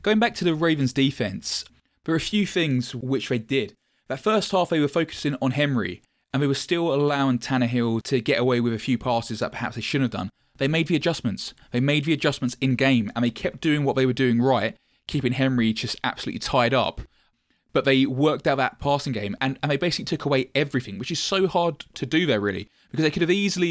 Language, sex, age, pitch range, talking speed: English, male, 20-39, 120-150 Hz, 235 wpm